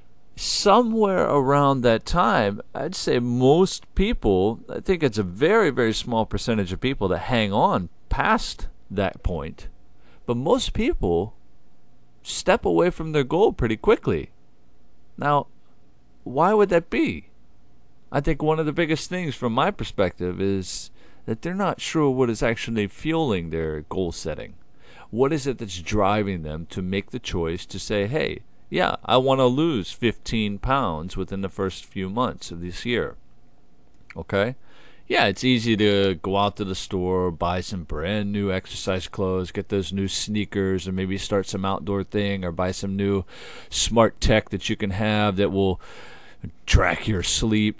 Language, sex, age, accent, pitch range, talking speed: English, male, 50-69, American, 90-120 Hz, 165 wpm